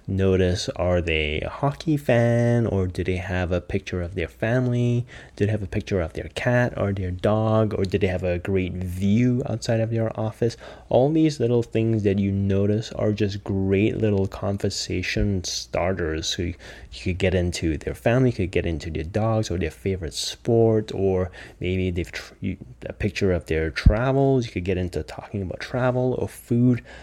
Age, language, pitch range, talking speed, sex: 30-49, English, 90-110 Hz, 190 wpm, male